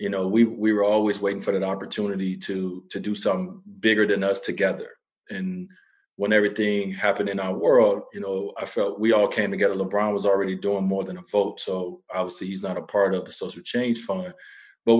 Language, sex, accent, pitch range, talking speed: English, male, American, 100-115 Hz, 210 wpm